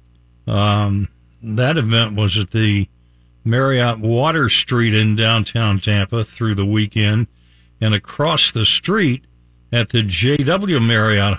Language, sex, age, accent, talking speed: English, male, 50-69, American, 120 wpm